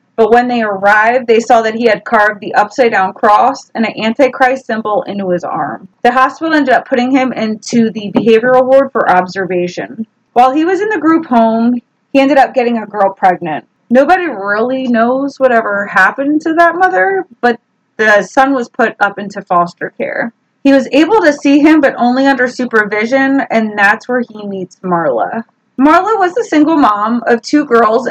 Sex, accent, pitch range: female, American, 215-275 Hz